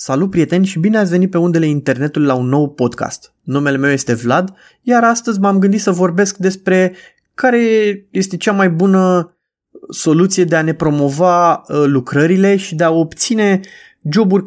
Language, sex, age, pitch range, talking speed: Romanian, male, 20-39, 150-200 Hz, 165 wpm